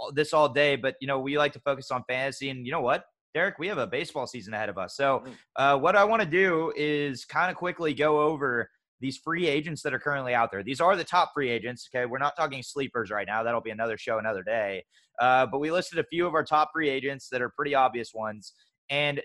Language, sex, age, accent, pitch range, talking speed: English, male, 20-39, American, 125-160 Hz, 255 wpm